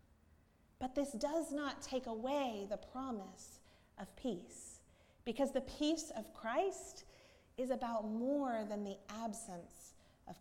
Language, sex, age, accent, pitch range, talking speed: English, female, 30-49, American, 175-240 Hz, 125 wpm